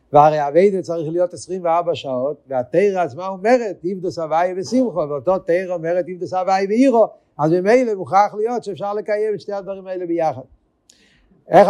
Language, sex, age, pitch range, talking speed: Hebrew, male, 50-69, 145-195 Hz, 160 wpm